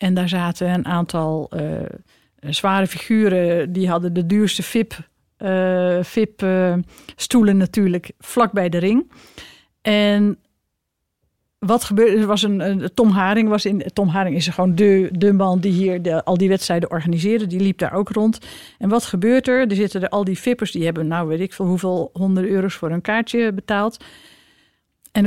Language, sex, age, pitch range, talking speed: Dutch, female, 50-69, 185-225 Hz, 170 wpm